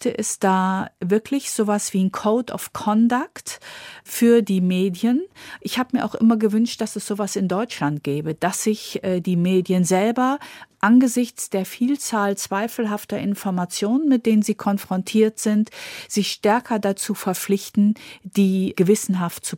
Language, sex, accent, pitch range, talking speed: German, female, German, 190-235 Hz, 145 wpm